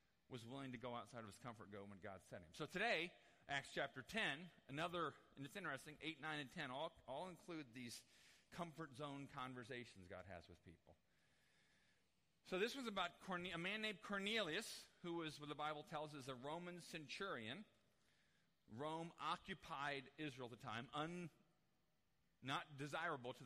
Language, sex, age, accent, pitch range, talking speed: English, male, 40-59, American, 110-150 Hz, 165 wpm